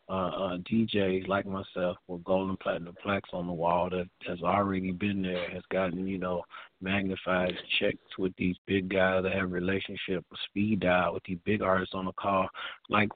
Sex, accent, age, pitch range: male, American, 40-59, 95-100 Hz